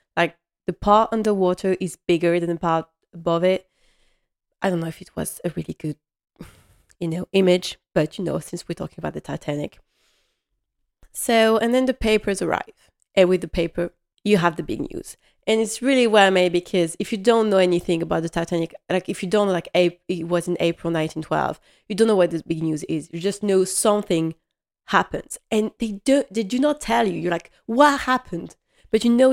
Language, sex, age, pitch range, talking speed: English, female, 20-39, 170-220 Hz, 200 wpm